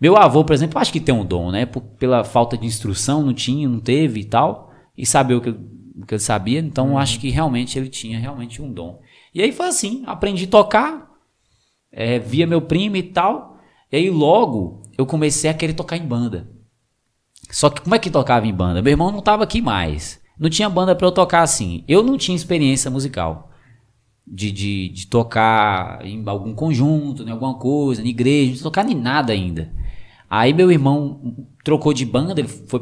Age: 20-39